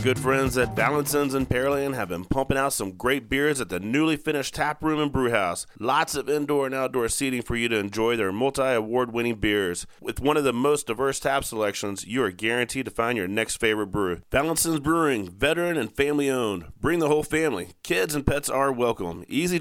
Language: English